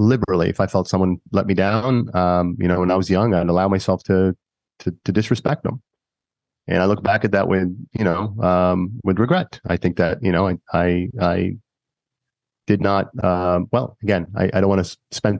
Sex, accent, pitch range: male, American, 90-110 Hz